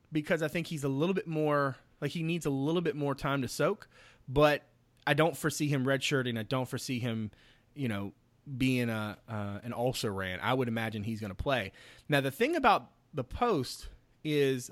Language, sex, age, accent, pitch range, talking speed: English, male, 30-49, American, 110-140 Hz, 205 wpm